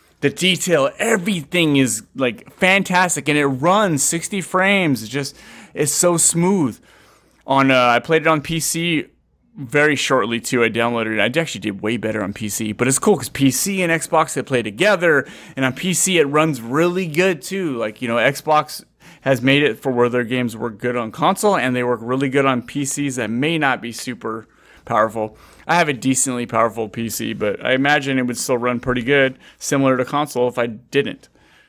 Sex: male